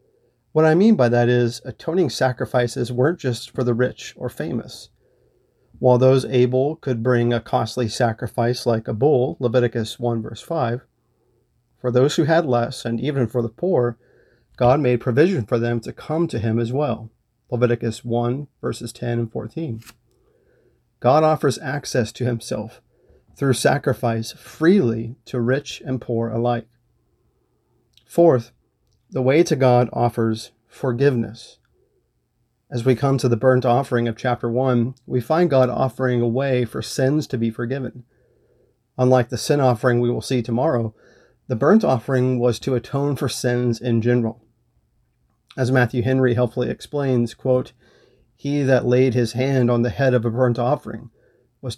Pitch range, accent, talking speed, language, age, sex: 120-130 Hz, American, 155 wpm, English, 40-59, male